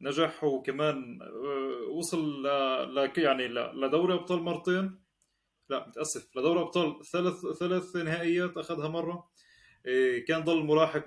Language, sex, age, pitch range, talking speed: Arabic, male, 20-39, 150-185 Hz, 125 wpm